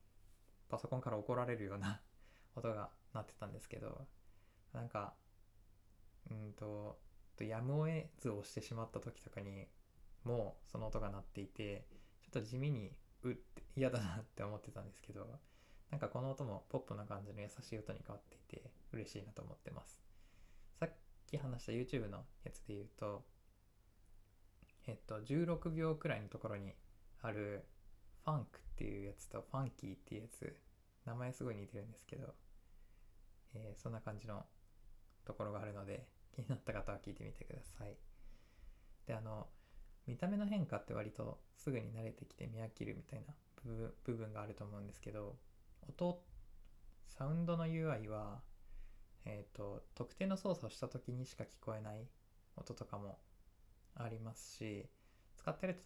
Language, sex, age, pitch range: Japanese, male, 20-39, 100-125 Hz